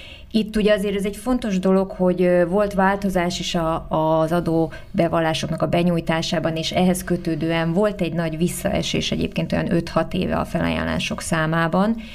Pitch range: 160-180 Hz